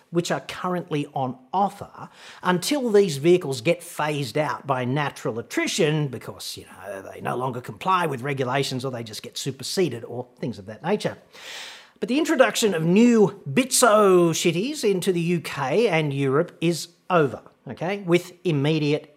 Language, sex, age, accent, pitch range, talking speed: English, male, 40-59, Australian, 140-205 Hz, 155 wpm